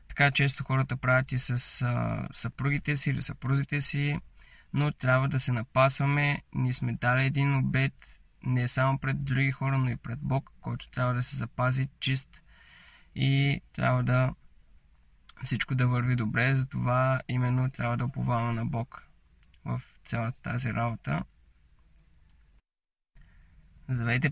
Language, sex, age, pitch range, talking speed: Bulgarian, male, 20-39, 120-135 Hz, 135 wpm